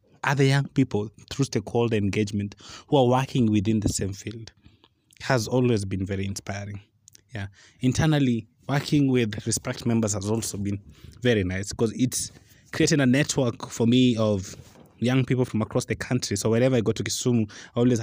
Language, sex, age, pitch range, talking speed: English, male, 20-39, 100-125 Hz, 170 wpm